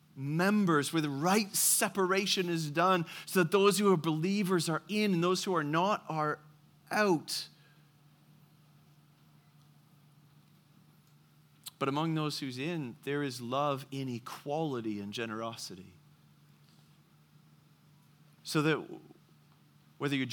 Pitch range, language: 140-160 Hz, English